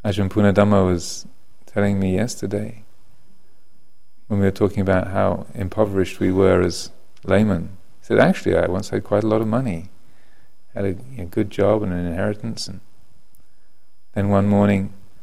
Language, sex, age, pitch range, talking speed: English, male, 40-59, 95-115 Hz, 160 wpm